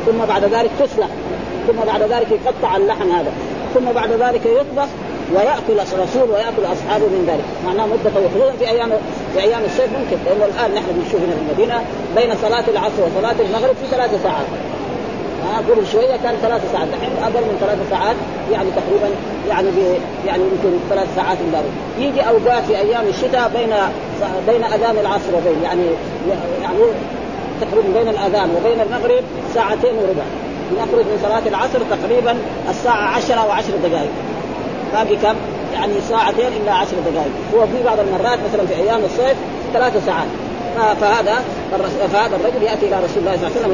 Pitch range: 205-270 Hz